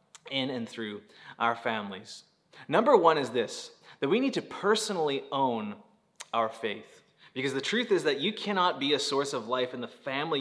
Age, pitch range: 20-39, 120-185 Hz